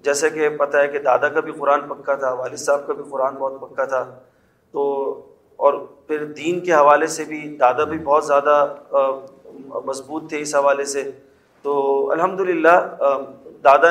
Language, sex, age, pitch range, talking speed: Urdu, male, 30-49, 140-165 Hz, 170 wpm